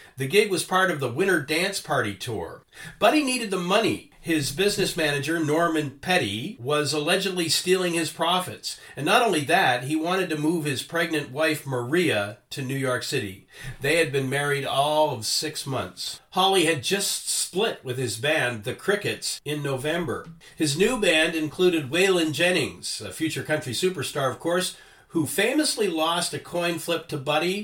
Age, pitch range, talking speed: 50-69, 135-175 Hz, 175 wpm